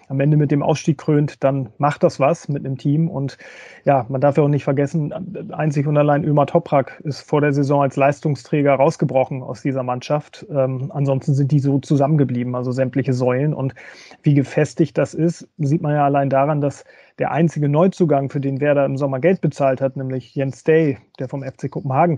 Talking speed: 200 wpm